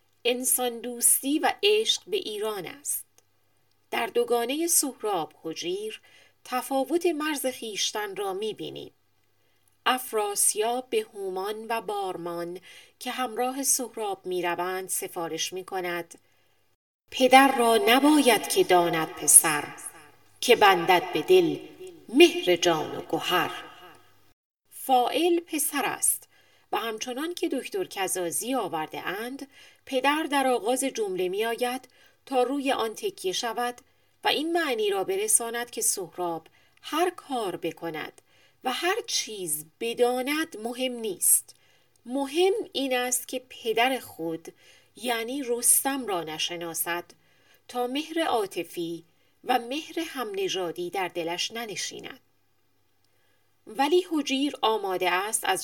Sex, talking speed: female, 110 wpm